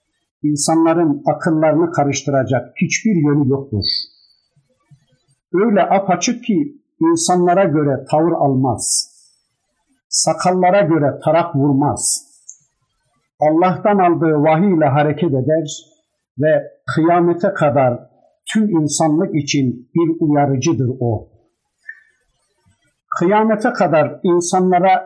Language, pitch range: Turkish, 145-180 Hz